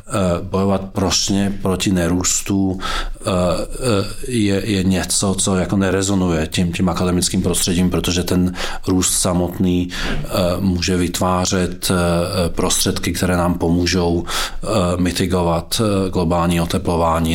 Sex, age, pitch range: male, 40-59, 90-100 Hz